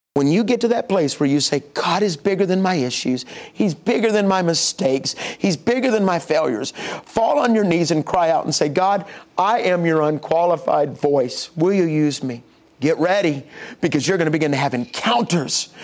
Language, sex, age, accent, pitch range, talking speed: English, male, 50-69, American, 155-215 Hz, 205 wpm